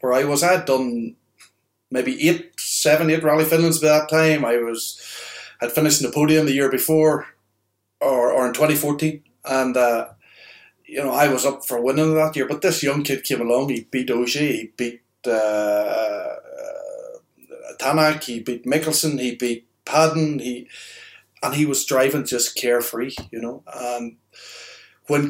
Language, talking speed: English, 165 wpm